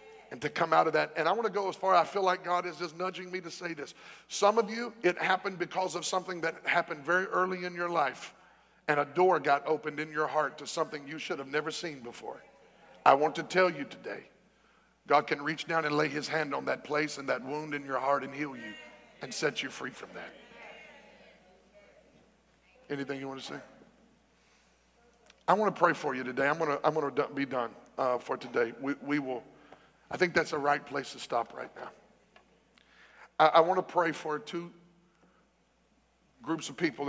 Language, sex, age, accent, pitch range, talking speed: English, male, 50-69, American, 135-165 Hz, 215 wpm